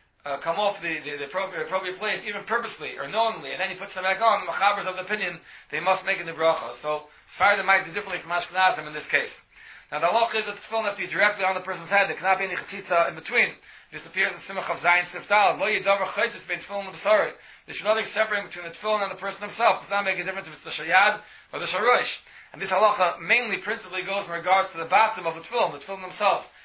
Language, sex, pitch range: English, male, 170-205 Hz